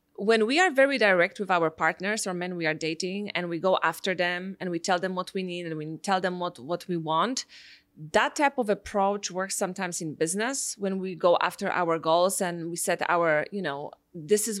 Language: English